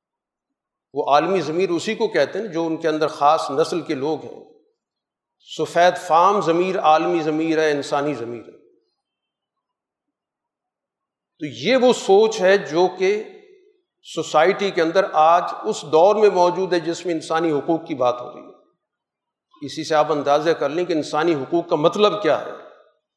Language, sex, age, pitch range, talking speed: Urdu, male, 50-69, 155-210 Hz, 165 wpm